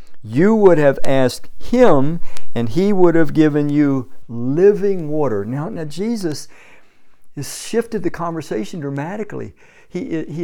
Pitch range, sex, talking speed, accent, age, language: 125-170 Hz, male, 130 wpm, American, 50-69, English